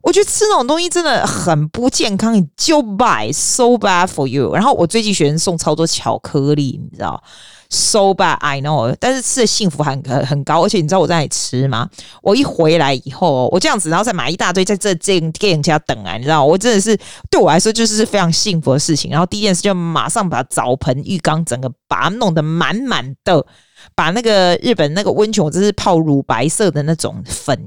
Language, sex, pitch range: Chinese, female, 145-200 Hz